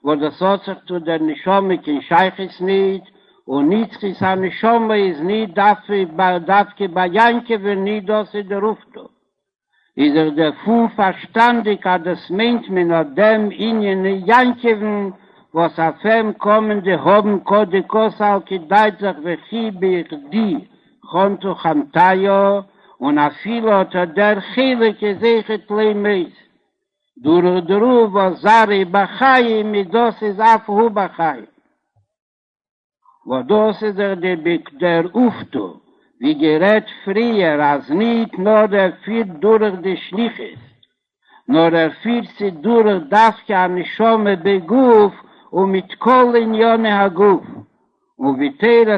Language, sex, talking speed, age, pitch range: Hebrew, male, 85 wpm, 60-79, 185-220 Hz